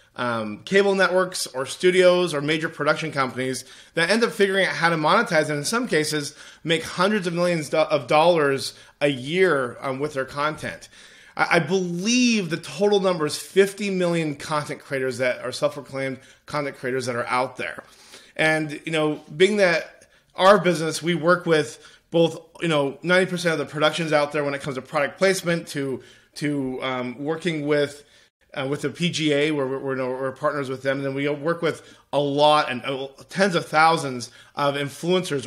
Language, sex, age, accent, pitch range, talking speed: English, male, 30-49, American, 140-170 Hz, 185 wpm